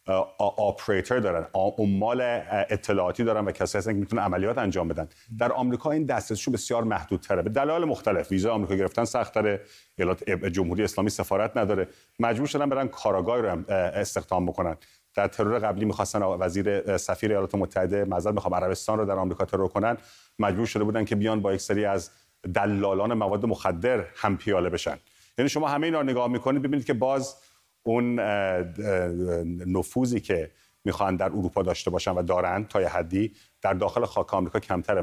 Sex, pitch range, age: male, 95-120 Hz, 40-59